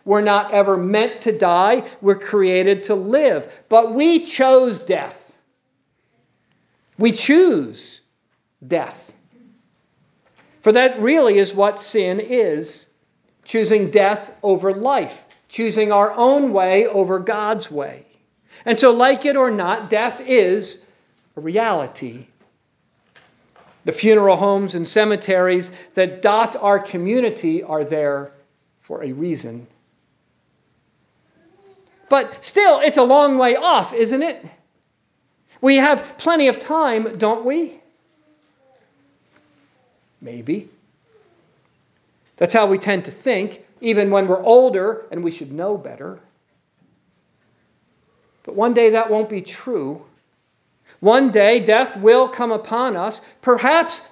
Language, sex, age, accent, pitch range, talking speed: English, male, 50-69, American, 195-255 Hz, 120 wpm